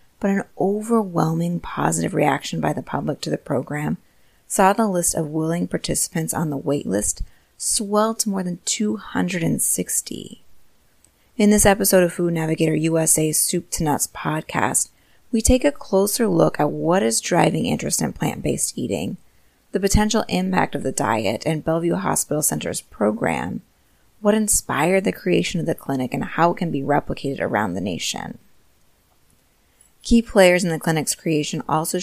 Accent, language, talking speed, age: American, English, 155 wpm, 30-49